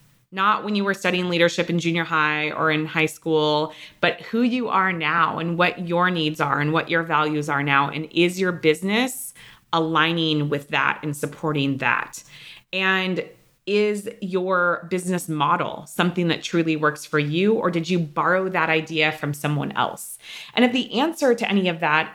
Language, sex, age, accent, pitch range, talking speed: English, female, 30-49, American, 155-185 Hz, 180 wpm